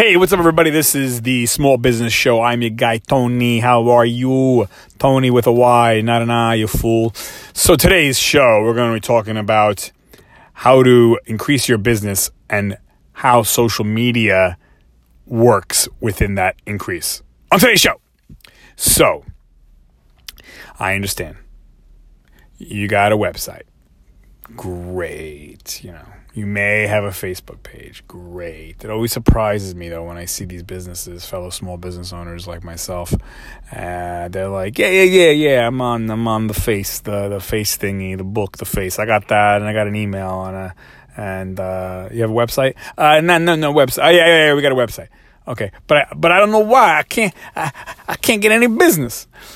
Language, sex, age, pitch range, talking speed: English, male, 30-49, 95-120 Hz, 180 wpm